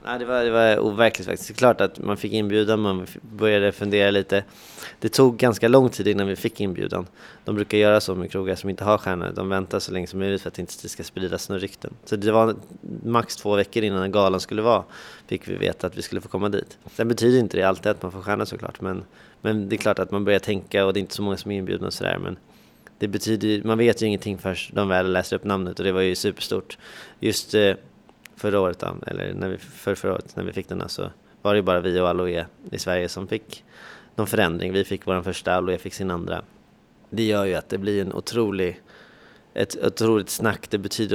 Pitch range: 95-110 Hz